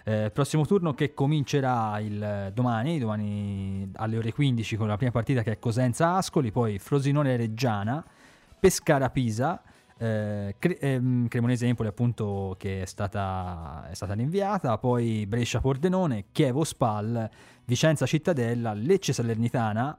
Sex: male